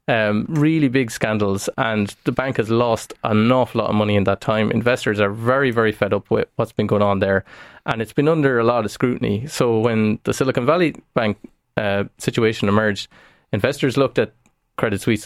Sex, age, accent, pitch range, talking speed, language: male, 20-39, Irish, 105-125 Hz, 200 wpm, English